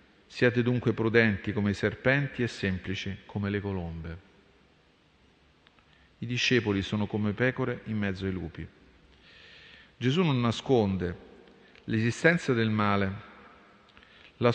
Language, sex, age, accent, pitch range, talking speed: Italian, male, 40-59, native, 95-120 Hz, 110 wpm